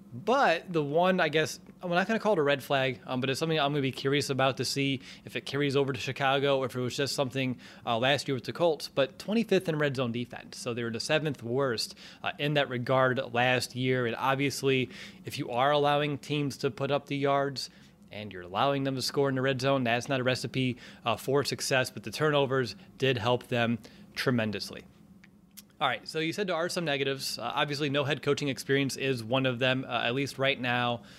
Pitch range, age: 125-145 Hz, 30-49